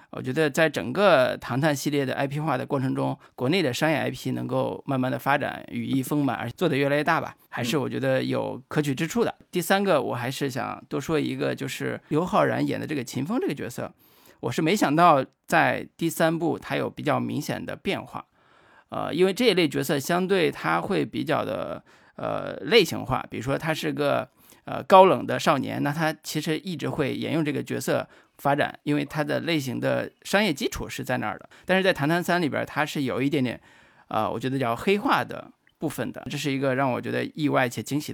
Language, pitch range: Chinese, 135-165 Hz